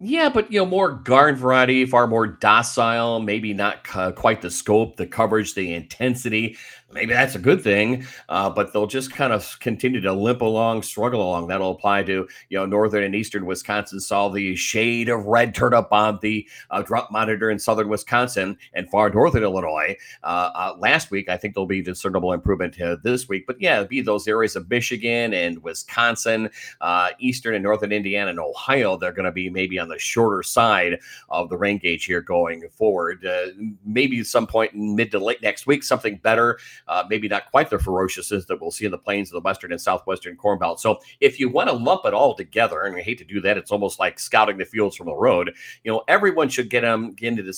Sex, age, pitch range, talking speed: male, 40-59, 100-125 Hz, 220 wpm